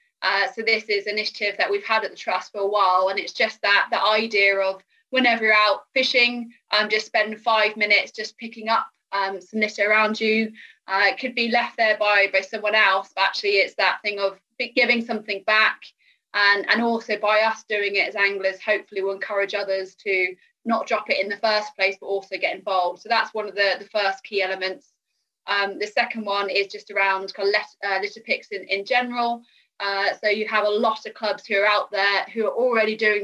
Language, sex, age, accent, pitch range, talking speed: English, female, 20-39, British, 200-230 Hz, 220 wpm